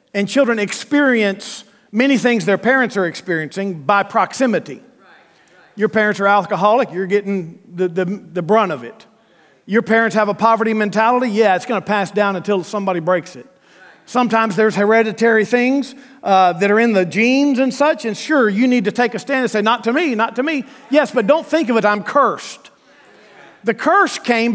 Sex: male